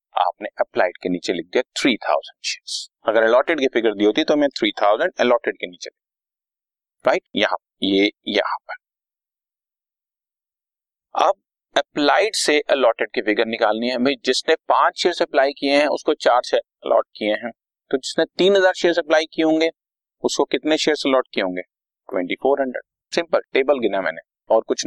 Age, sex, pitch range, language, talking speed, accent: 30-49, male, 130-180 Hz, Hindi, 35 wpm, native